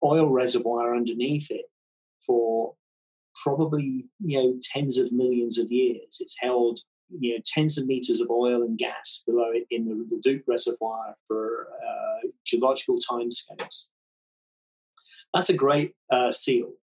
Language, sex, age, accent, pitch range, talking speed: English, male, 30-49, British, 120-185 Hz, 140 wpm